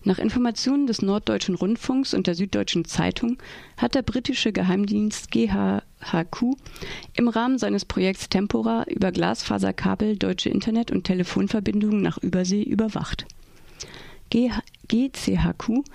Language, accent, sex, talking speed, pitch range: German, German, female, 110 wpm, 185-235 Hz